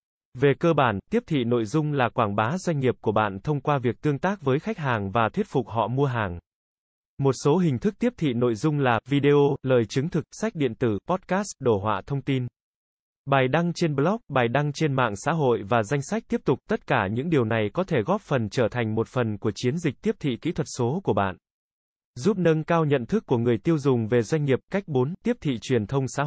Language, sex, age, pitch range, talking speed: Vietnamese, male, 20-39, 120-160 Hz, 240 wpm